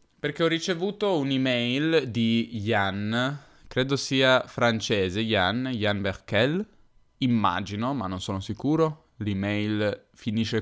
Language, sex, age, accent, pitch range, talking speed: Italian, male, 10-29, native, 110-135 Hz, 105 wpm